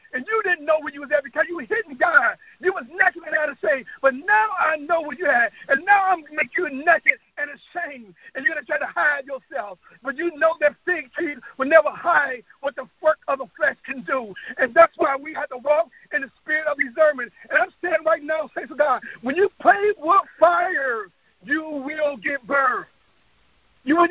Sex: male